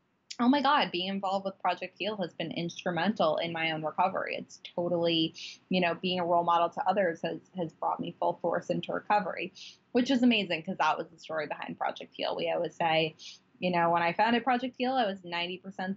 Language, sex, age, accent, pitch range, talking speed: English, female, 10-29, American, 170-215 Hz, 220 wpm